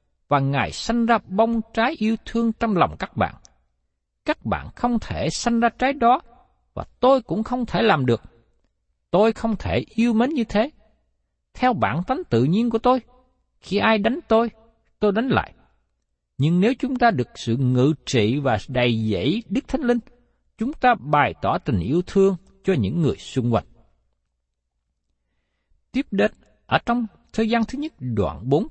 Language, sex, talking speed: Vietnamese, male, 175 wpm